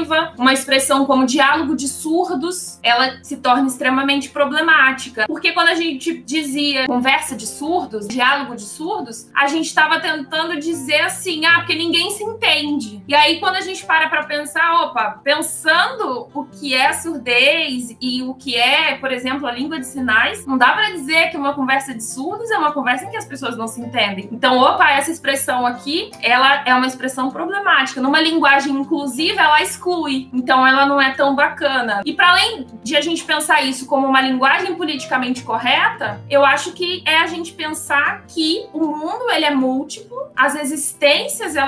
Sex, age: female, 20-39